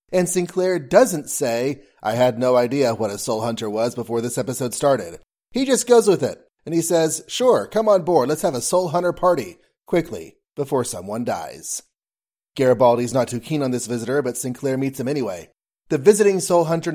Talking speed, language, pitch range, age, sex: 195 wpm, English, 125-150 Hz, 30-49, male